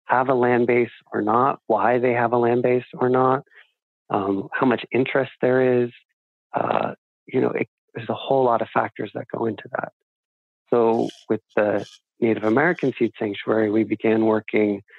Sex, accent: male, American